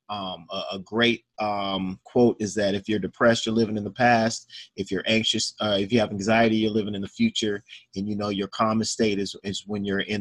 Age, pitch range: 30-49, 110-130 Hz